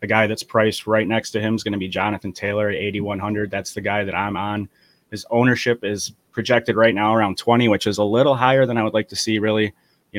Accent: American